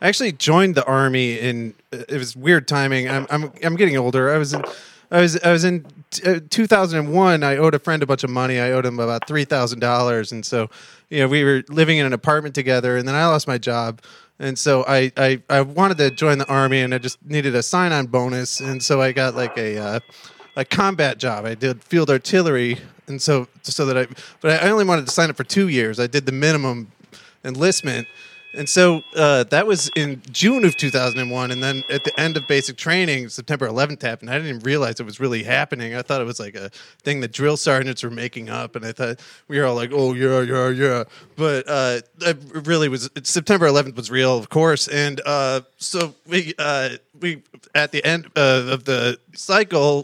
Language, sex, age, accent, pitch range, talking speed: English, male, 30-49, American, 130-160 Hz, 220 wpm